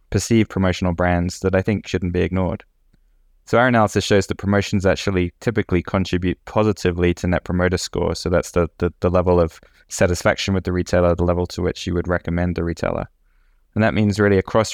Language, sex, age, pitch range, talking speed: English, male, 20-39, 90-100 Hz, 195 wpm